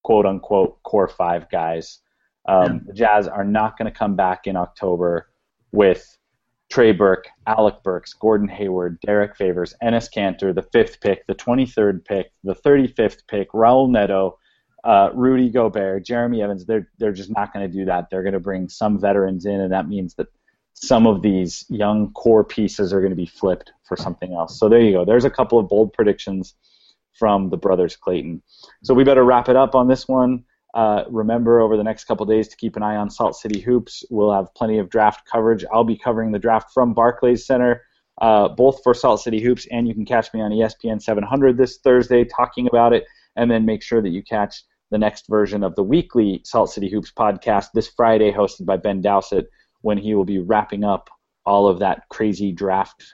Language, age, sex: English, 30-49, male